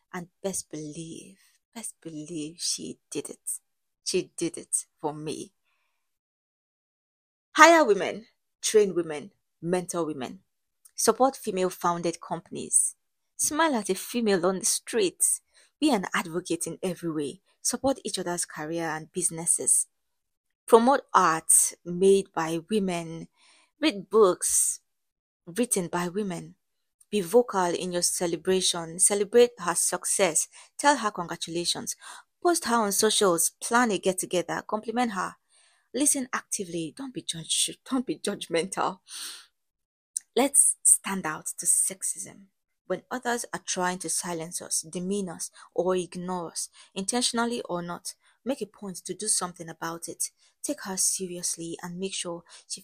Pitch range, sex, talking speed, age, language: 170-230 Hz, female, 125 wpm, 20-39, English